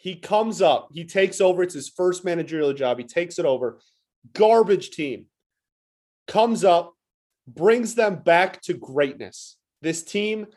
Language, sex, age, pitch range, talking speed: English, male, 30-49, 155-205 Hz, 150 wpm